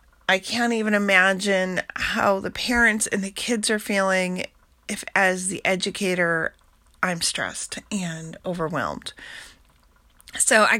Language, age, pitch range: English, 30-49, 180-220 Hz